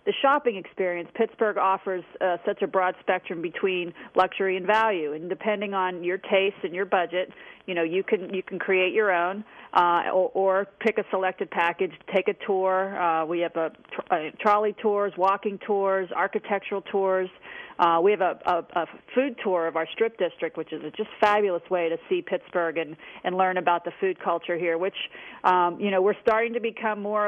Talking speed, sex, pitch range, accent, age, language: 200 wpm, female, 170-200 Hz, American, 40-59, English